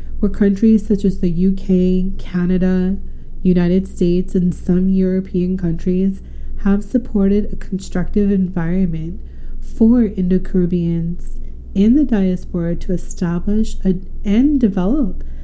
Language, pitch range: English, 175-210 Hz